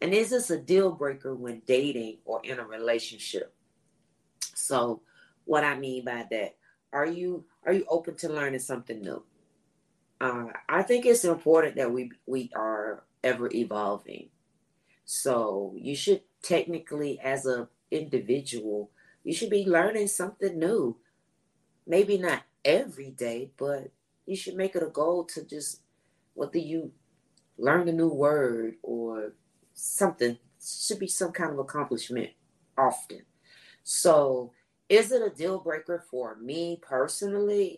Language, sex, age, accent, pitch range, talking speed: English, female, 40-59, American, 125-170 Hz, 140 wpm